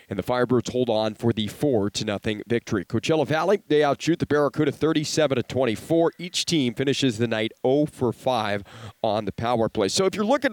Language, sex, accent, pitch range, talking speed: English, male, American, 125-155 Hz, 195 wpm